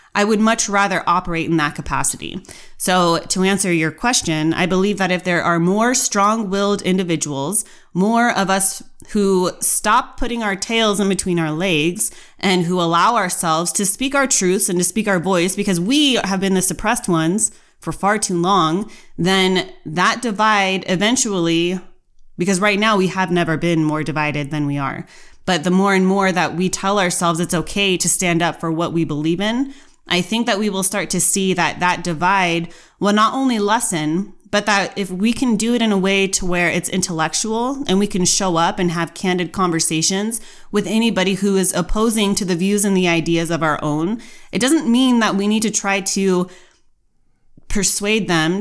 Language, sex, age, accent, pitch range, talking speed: English, female, 20-39, American, 170-205 Hz, 195 wpm